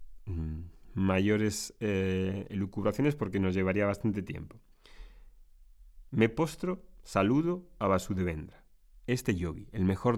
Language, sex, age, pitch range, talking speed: Spanish, male, 30-49, 90-130 Hz, 100 wpm